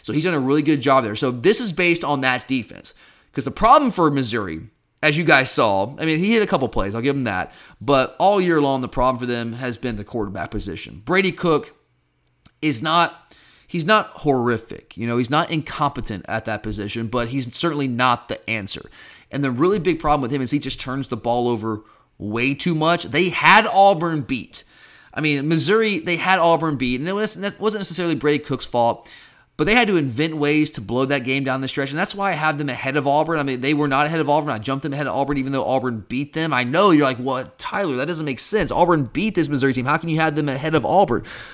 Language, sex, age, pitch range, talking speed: English, male, 30-49, 130-165 Hz, 245 wpm